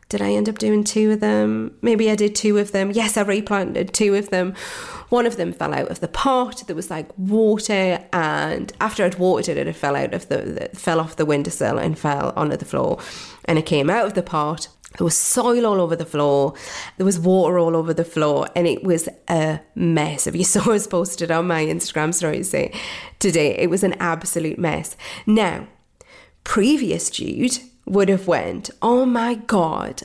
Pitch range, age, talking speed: 170-230 Hz, 30-49, 200 wpm